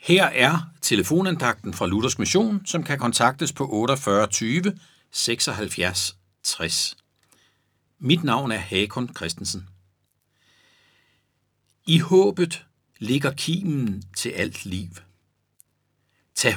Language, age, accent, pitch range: Danish, 60-79, native, 105-165 Hz